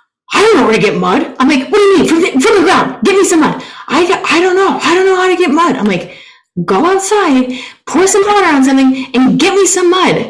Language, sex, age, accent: English, female, 20-39, American